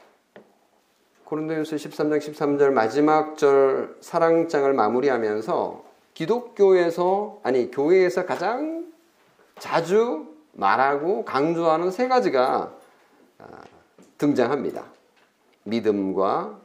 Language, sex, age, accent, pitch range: Korean, male, 40-59, native, 135-220 Hz